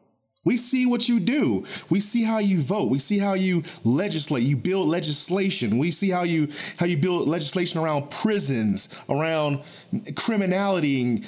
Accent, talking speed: American, 165 wpm